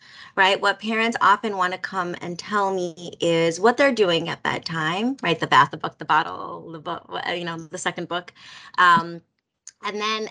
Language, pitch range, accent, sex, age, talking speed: English, 180-250 Hz, American, female, 30-49, 190 wpm